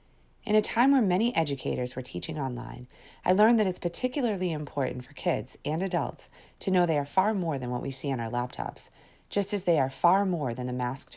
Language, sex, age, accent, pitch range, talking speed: English, female, 40-59, American, 125-175 Hz, 220 wpm